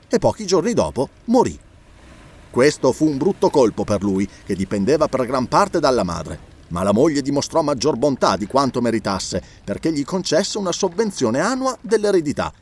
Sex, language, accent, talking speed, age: male, Italian, native, 165 wpm, 30-49